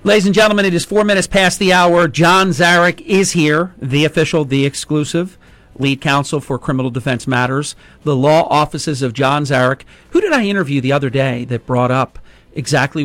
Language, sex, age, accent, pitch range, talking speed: English, male, 50-69, American, 120-150 Hz, 190 wpm